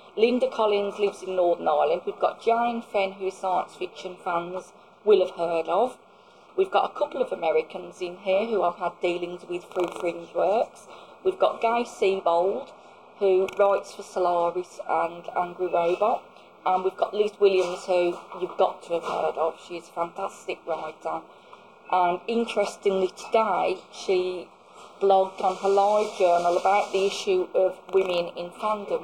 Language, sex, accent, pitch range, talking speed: English, female, British, 185-235 Hz, 160 wpm